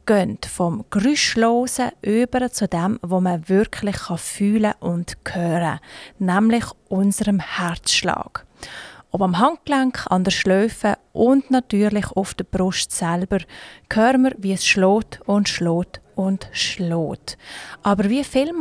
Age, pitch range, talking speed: 30-49, 180-235 Hz, 125 wpm